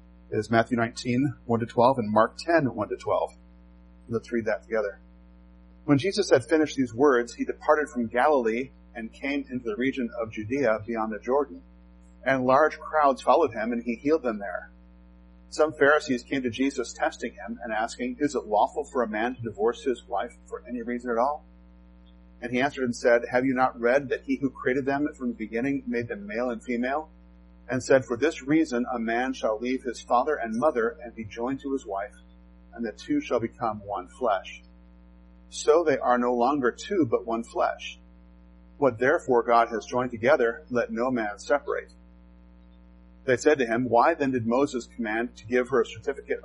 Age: 40-59